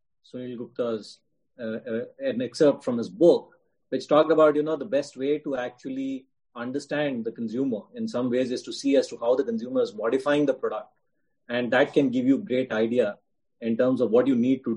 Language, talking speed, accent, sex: English, 210 wpm, Indian, male